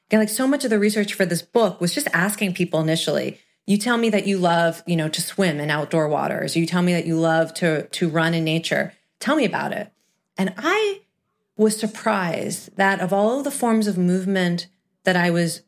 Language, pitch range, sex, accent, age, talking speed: English, 160-195 Hz, female, American, 30-49, 220 wpm